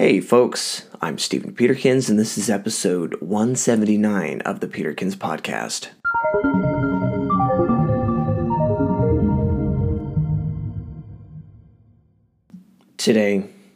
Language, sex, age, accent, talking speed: English, male, 20-39, American, 65 wpm